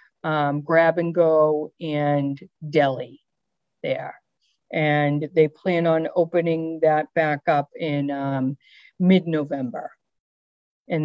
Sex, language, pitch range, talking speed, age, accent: female, English, 150-180 Hz, 105 wpm, 50-69, American